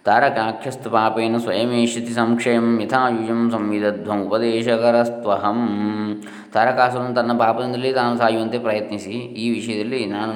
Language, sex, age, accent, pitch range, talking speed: Kannada, male, 20-39, native, 100-115 Hz, 85 wpm